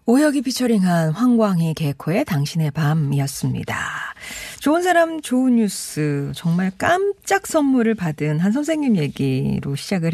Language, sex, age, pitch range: Korean, female, 40-59, 155-230 Hz